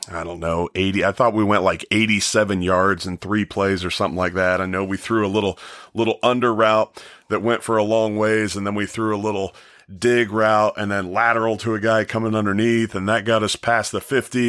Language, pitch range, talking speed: English, 100-115 Hz, 230 wpm